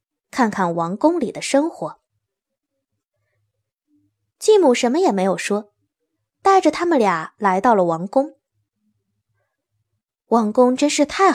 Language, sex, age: Chinese, female, 20-39